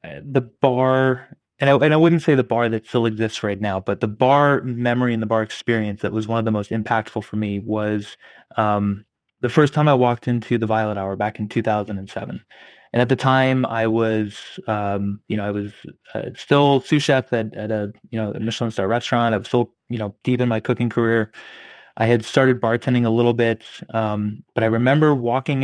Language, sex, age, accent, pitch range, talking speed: English, male, 20-39, American, 110-130 Hz, 210 wpm